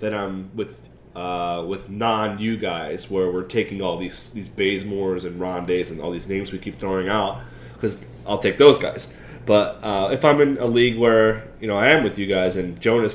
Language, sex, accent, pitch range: English, male, American, 100-140 Hz